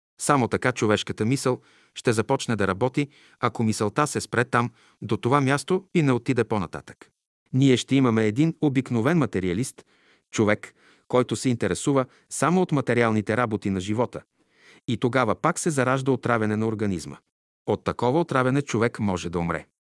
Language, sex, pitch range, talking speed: Bulgarian, male, 110-140 Hz, 155 wpm